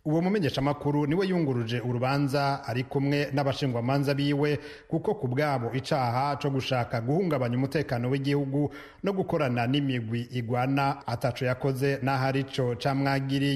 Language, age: English, 40-59